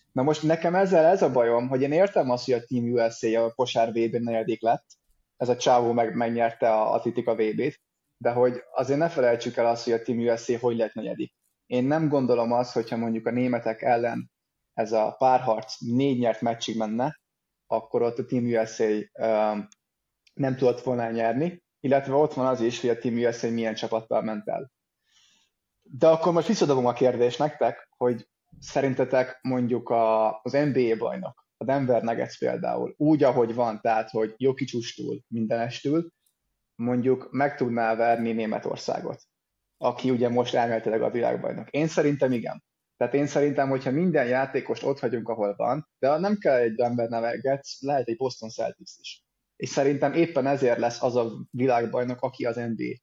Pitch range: 115-140 Hz